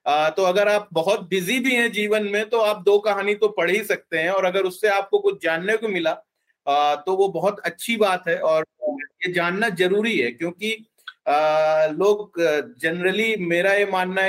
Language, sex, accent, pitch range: Hindi, male, native, 160-205 Hz